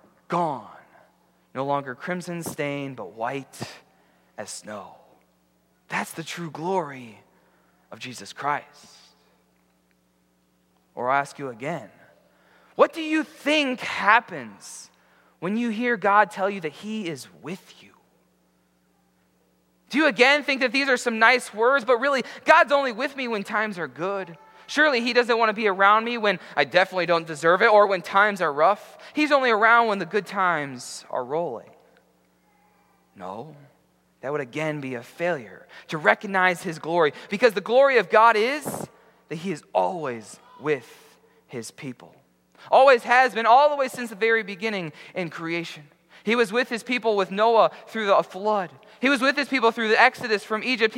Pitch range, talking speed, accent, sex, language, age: 145-235 Hz, 165 wpm, American, male, English, 20-39